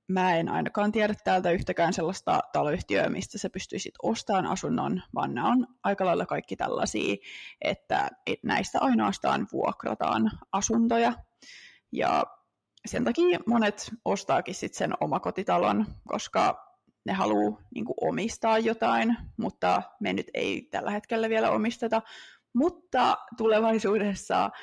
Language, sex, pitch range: Finnish, female, 185-245 Hz